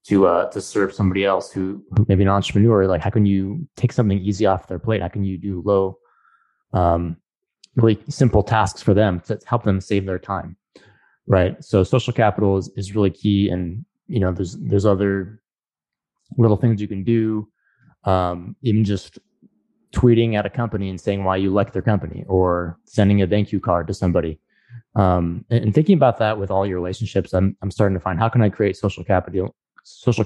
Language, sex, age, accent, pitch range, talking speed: English, male, 20-39, American, 95-110 Hz, 200 wpm